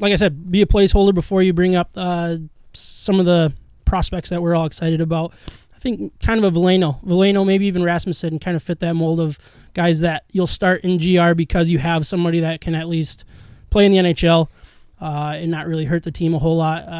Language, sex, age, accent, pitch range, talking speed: English, male, 20-39, American, 165-190 Hz, 225 wpm